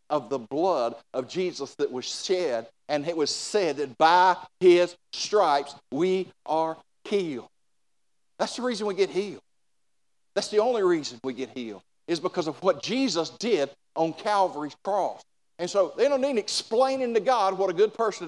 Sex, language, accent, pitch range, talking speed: male, English, American, 180-235 Hz, 175 wpm